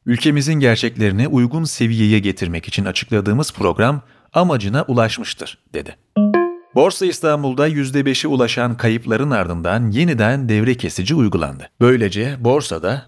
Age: 40-59